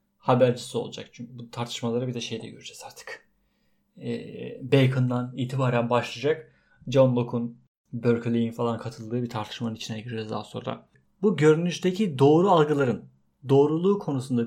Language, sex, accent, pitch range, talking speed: Turkish, male, native, 125-175 Hz, 130 wpm